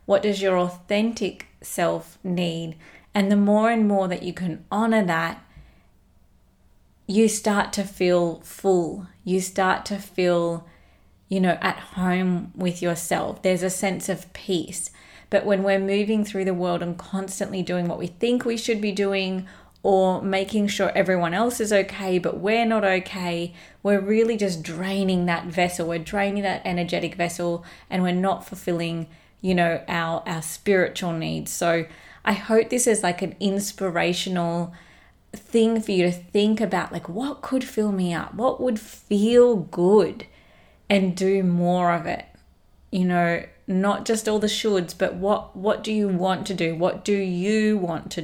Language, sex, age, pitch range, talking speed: English, female, 30-49, 175-205 Hz, 165 wpm